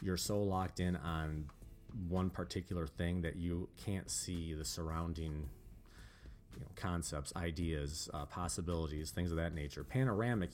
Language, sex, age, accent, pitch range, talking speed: English, male, 30-49, American, 85-100 Hz, 130 wpm